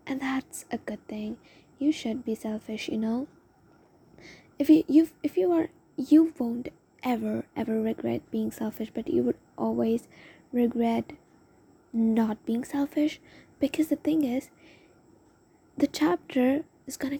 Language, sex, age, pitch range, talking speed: English, female, 20-39, 235-305 Hz, 140 wpm